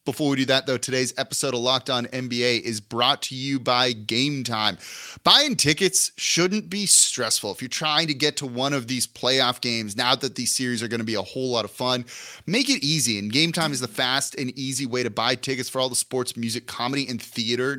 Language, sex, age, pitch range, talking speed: English, male, 30-49, 125-165 Hz, 235 wpm